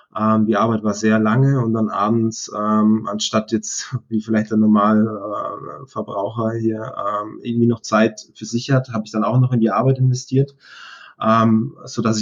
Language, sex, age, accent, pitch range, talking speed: German, male, 20-39, German, 110-125 Hz, 155 wpm